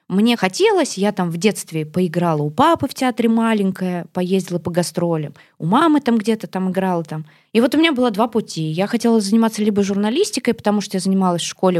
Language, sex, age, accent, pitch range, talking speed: Russian, female, 20-39, native, 170-225 Hz, 205 wpm